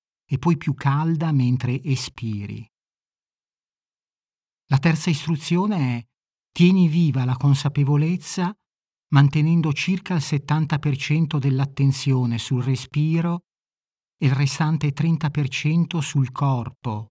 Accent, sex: native, male